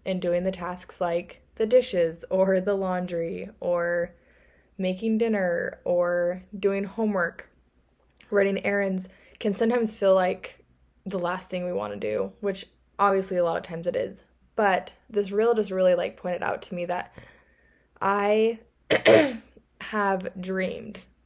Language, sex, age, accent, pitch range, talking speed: English, female, 20-39, American, 175-195 Hz, 145 wpm